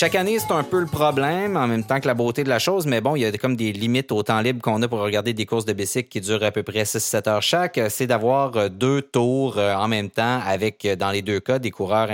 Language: French